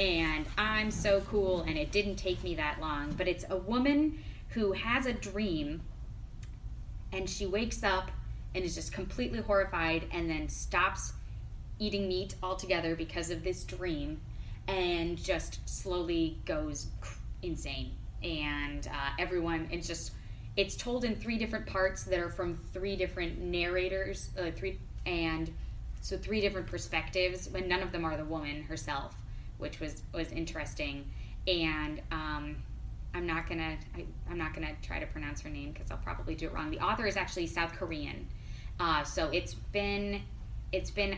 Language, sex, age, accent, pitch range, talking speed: English, female, 20-39, American, 150-190 Hz, 160 wpm